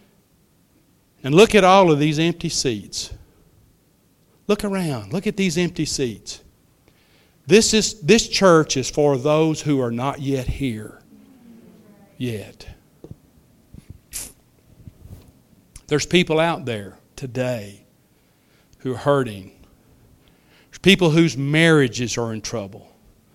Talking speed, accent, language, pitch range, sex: 110 wpm, American, English, 120-165 Hz, male